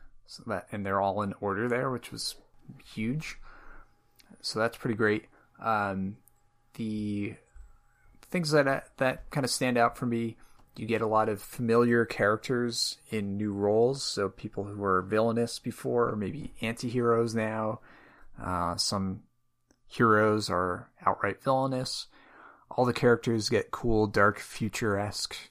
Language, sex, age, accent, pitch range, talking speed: English, male, 30-49, American, 100-125 Hz, 140 wpm